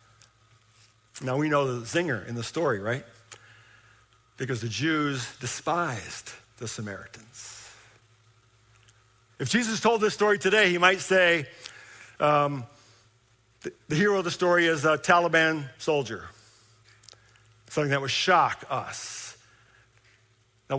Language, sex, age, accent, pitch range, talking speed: English, male, 50-69, American, 115-185 Hz, 120 wpm